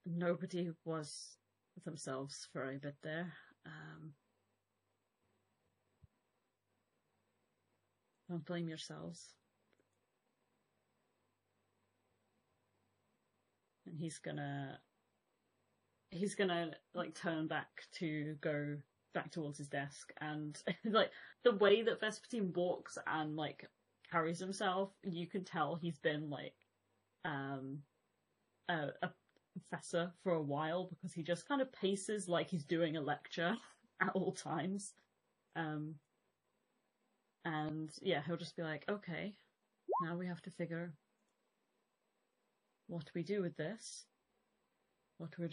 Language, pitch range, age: English, 145-180 Hz, 30-49